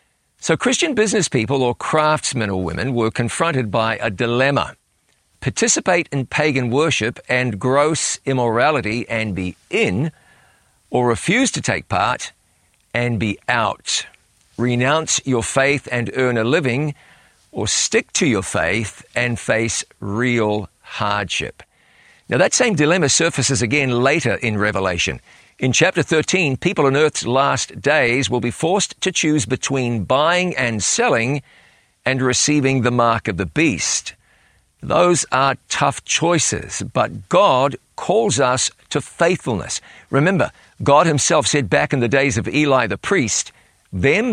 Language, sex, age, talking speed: English, male, 50-69, 140 wpm